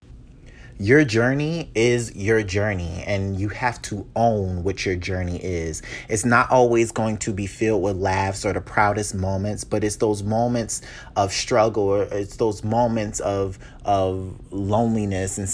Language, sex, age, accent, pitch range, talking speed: English, male, 30-49, American, 95-115 Hz, 160 wpm